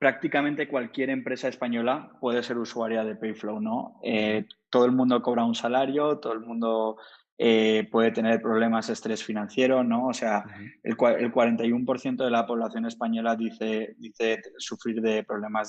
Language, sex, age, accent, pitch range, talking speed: Spanish, male, 20-39, Spanish, 110-120 Hz, 160 wpm